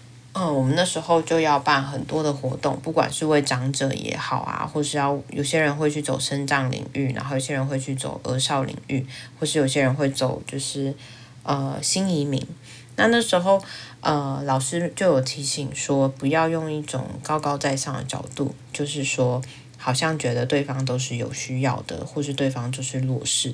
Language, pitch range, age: Chinese, 130-150 Hz, 20-39